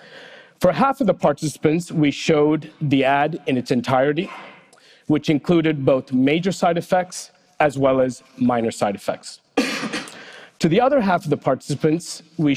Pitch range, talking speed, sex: 140-170 Hz, 155 wpm, male